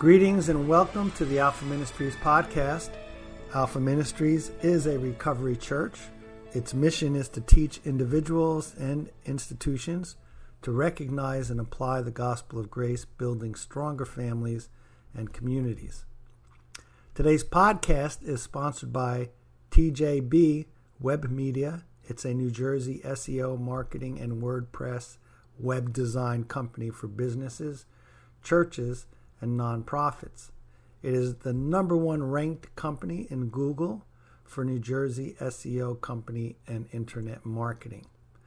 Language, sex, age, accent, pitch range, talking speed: English, male, 50-69, American, 120-150 Hz, 120 wpm